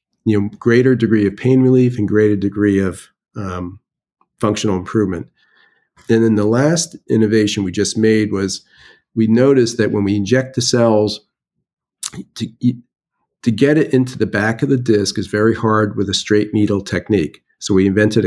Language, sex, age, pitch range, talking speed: English, male, 50-69, 100-115 Hz, 170 wpm